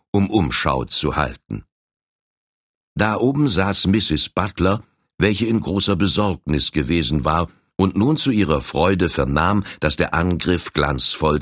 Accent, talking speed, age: German, 130 wpm, 60-79